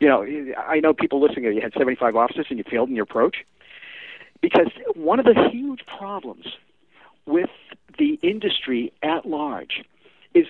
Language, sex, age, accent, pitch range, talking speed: English, male, 50-69, American, 145-245 Hz, 160 wpm